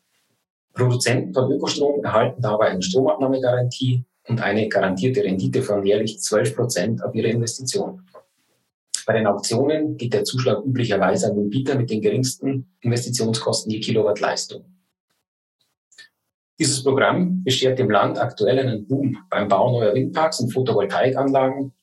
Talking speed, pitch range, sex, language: 130 wpm, 105-135 Hz, male, German